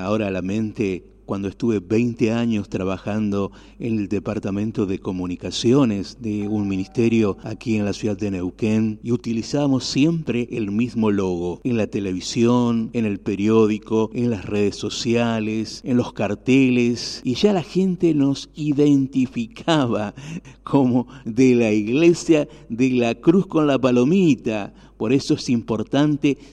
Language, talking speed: English, 140 wpm